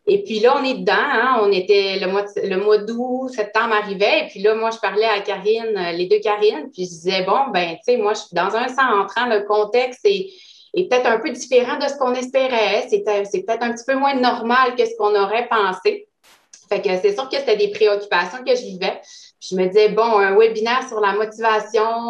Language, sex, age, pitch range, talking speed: French, female, 30-49, 200-250 Hz, 240 wpm